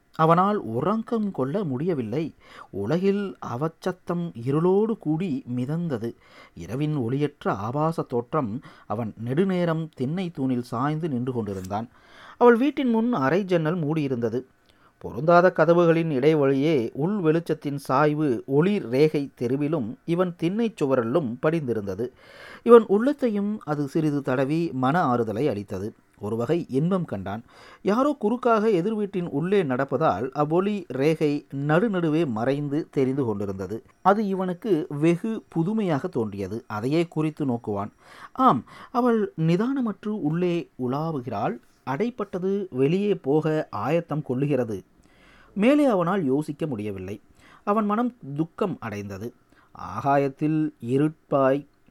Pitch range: 130-185 Hz